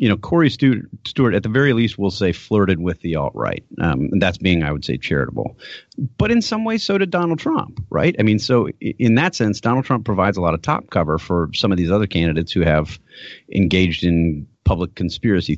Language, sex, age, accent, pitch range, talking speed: English, male, 40-59, American, 80-105 Hz, 225 wpm